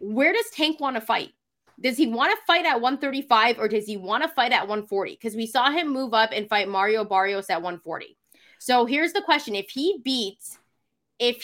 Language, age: English, 20-39